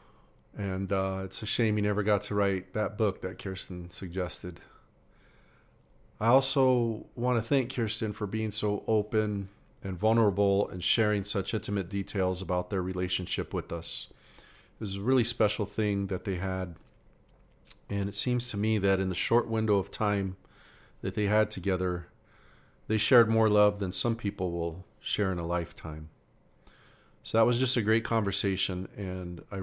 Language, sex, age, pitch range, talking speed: English, male, 40-59, 95-110 Hz, 170 wpm